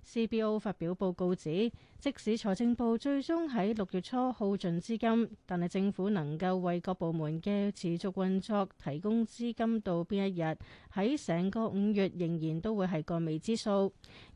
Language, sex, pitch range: Chinese, female, 175-225 Hz